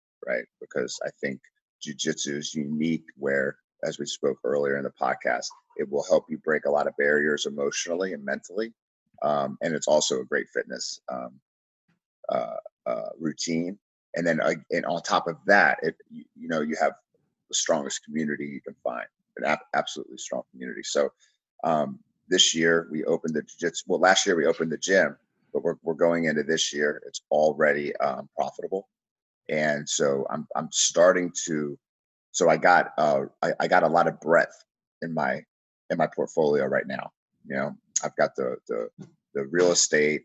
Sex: male